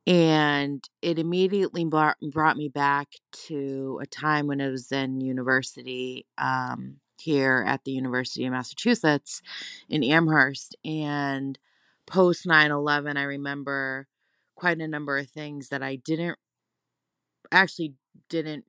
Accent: American